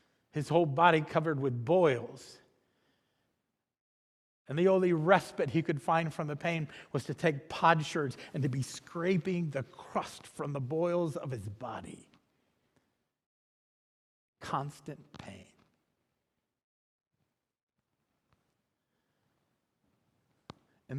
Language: English